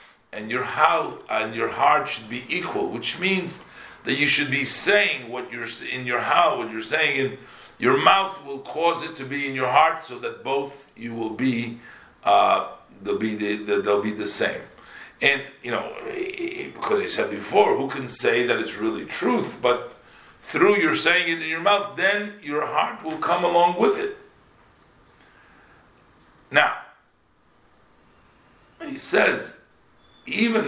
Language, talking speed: English, 160 wpm